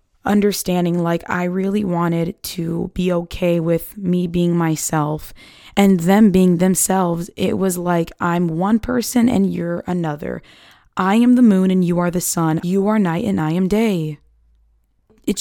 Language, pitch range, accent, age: English, 170-205 Hz, American, 20-39